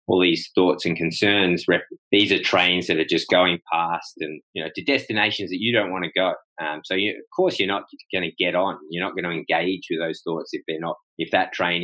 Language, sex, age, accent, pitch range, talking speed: English, male, 20-39, Australian, 80-110 Hz, 250 wpm